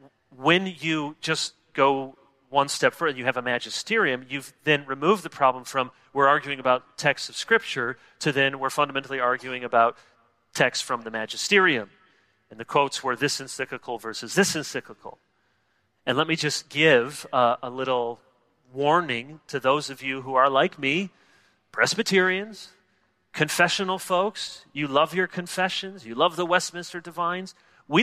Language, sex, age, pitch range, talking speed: English, male, 30-49, 135-180 Hz, 155 wpm